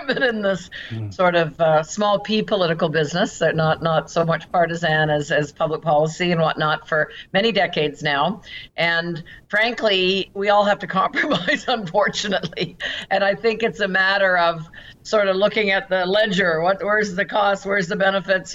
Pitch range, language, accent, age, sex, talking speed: 160-210 Hz, English, American, 50-69, female, 180 wpm